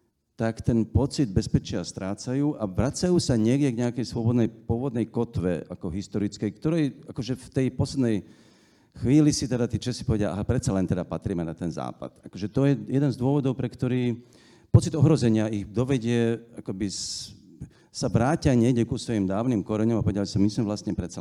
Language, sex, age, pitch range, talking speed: Czech, male, 50-69, 100-130 Hz, 175 wpm